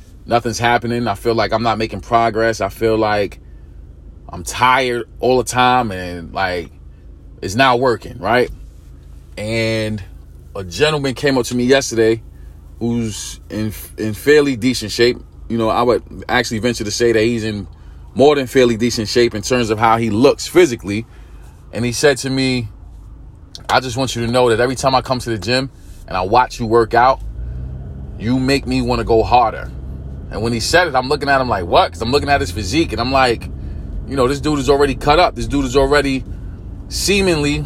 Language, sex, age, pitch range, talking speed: English, male, 30-49, 90-130 Hz, 200 wpm